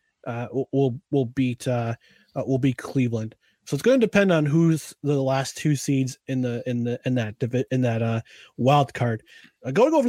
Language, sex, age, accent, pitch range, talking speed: English, male, 30-49, American, 130-175 Hz, 200 wpm